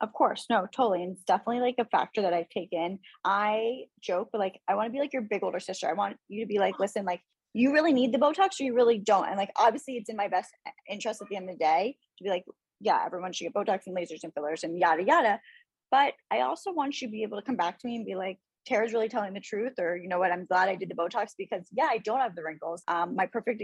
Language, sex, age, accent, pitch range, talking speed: English, female, 10-29, American, 185-235 Hz, 285 wpm